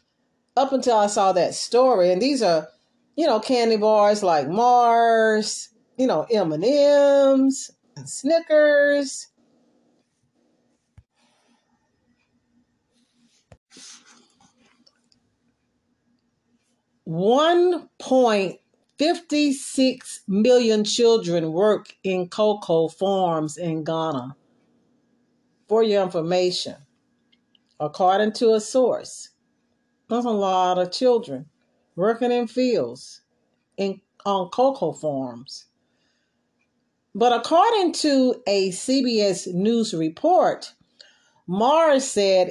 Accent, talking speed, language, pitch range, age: American, 90 wpm, English, 185-255 Hz, 40-59